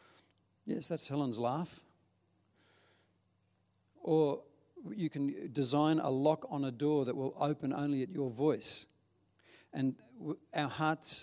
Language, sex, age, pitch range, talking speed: English, male, 50-69, 120-155 Hz, 125 wpm